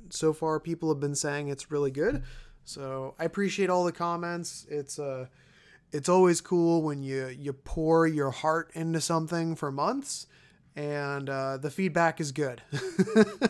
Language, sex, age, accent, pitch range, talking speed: English, male, 20-39, American, 140-170 Hz, 160 wpm